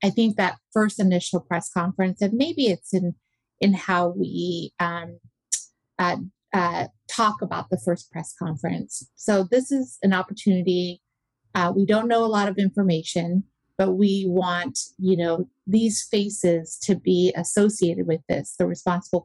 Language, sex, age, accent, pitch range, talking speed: English, female, 30-49, American, 175-200 Hz, 155 wpm